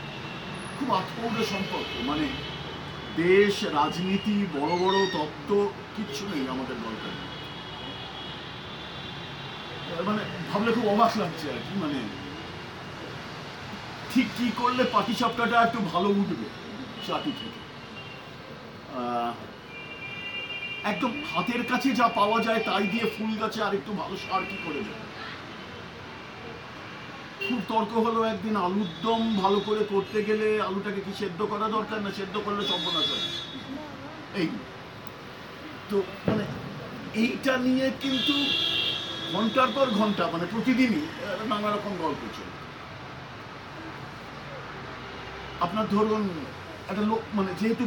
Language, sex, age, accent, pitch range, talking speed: Bengali, male, 50-69, native, 180-225 Hz, 55 wpm